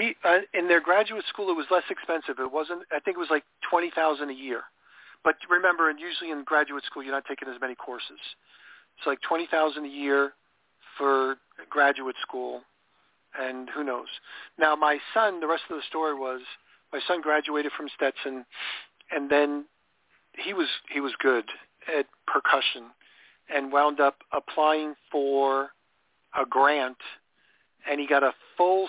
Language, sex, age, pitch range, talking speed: English, male, 40-59, 130-155 Hz, 165 wpm